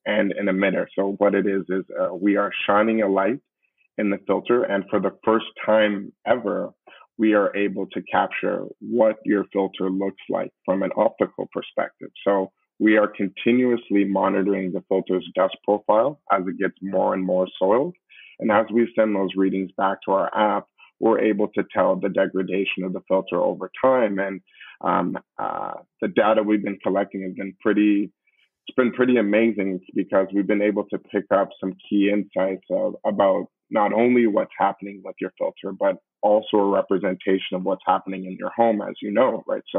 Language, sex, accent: English, male, American